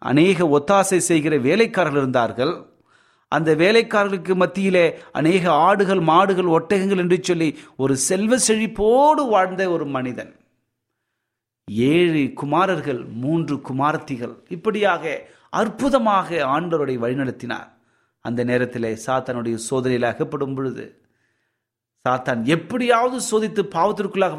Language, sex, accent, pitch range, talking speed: Tamil, male, native, 125-190 Hz, 95 wpm